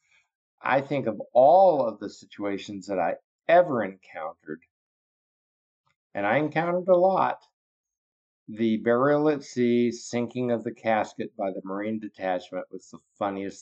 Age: 50-69